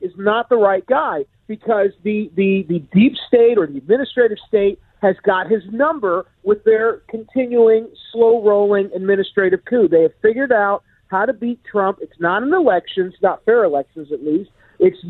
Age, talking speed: 50-69, 165 wpm